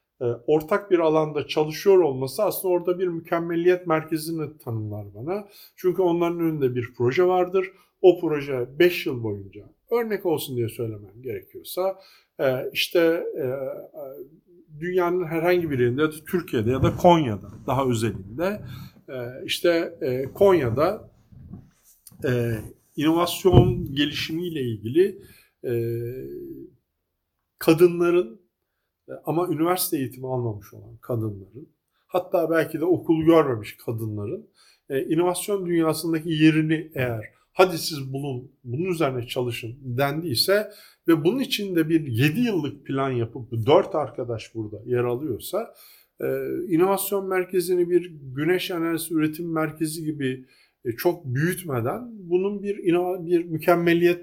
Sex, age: male, 50-69